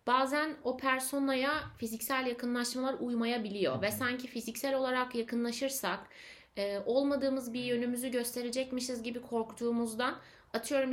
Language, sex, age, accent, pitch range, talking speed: Turkish, female, 30-49, native, 215-265 Hz, 100 wpm